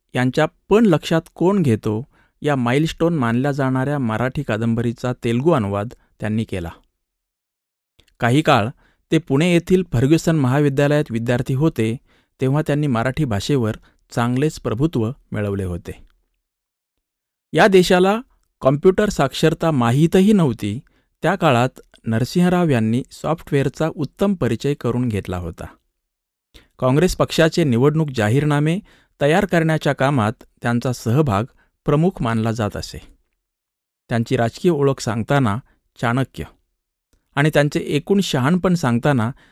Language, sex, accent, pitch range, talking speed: Marathi, male, native, 115-160 Hz, 110 wpm